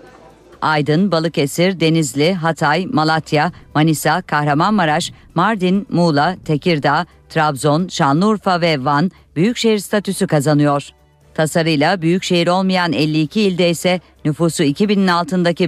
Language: Turkish